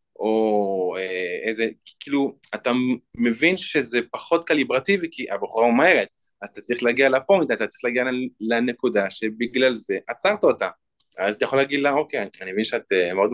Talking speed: 155 wpm